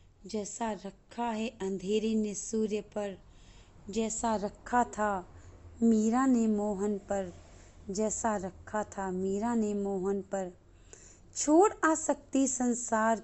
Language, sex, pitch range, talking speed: Hindi, female, 190-245 Hz, 115 wpm